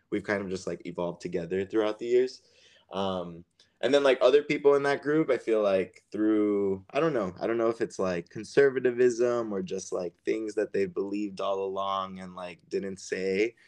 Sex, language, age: male, English, 20-39